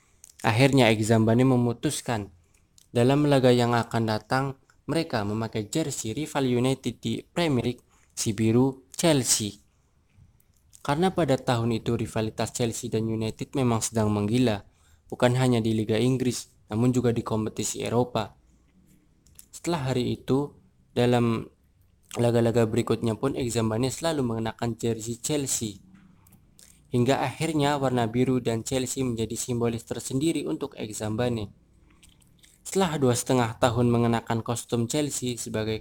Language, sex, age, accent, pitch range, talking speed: Indonesian, male, 20-39, native, 110-130 Hz, 115 wpm